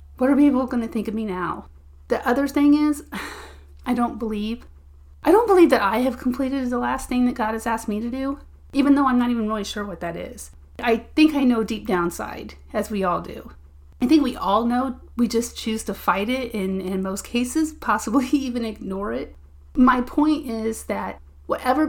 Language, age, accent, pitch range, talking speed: English, 30-49, American, 205-260 Hz, 210 wpm